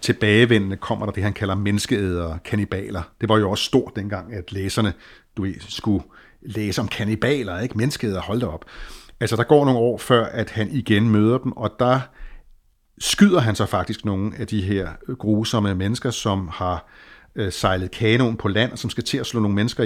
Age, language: 60-79, Danish